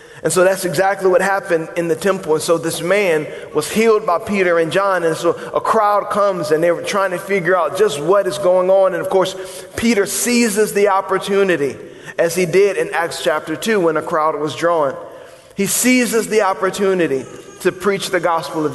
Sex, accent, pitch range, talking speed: male, American, 170-205 Hz, 205 wpm